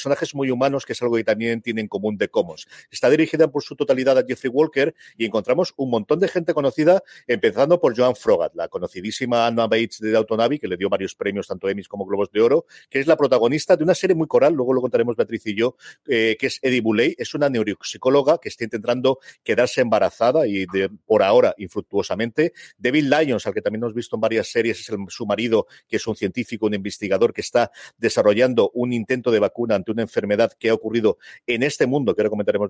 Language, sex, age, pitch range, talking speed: Spanish, male, 40-59, 115-155 Hz, 215 wpm